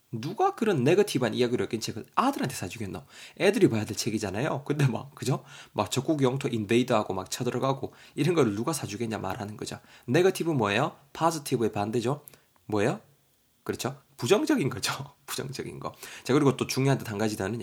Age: 20-39